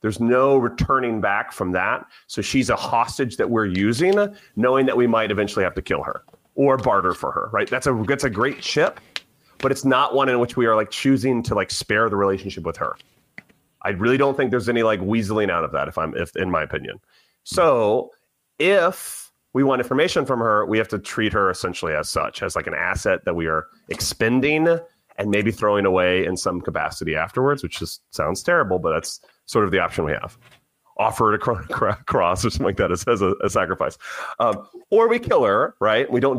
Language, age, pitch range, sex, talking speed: English, 30-49, 110-145 Hz, male, 215 wpm